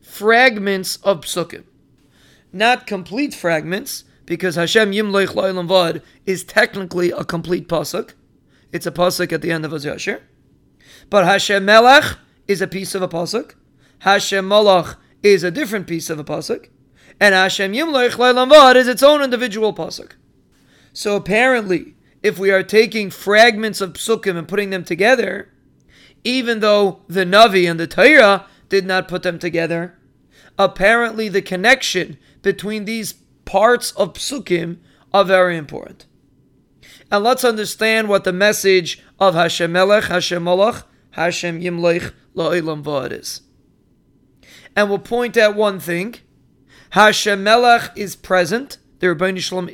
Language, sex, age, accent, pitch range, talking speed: English, male, 30-49, American, 175-215 Hz, 140 wpm